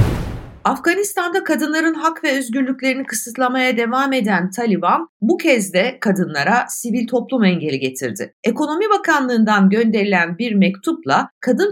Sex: female